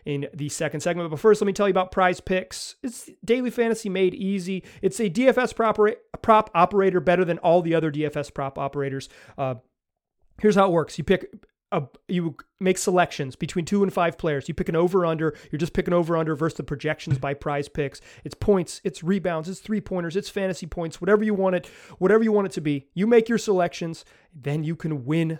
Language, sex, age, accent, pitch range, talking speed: English, male, 30-49, American, 160-205 Hz, 210 wpm